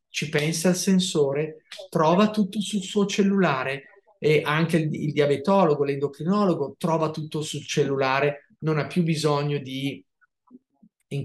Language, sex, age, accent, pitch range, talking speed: Italian, male, 30-49, native, 145-170 Hz, 135 wpm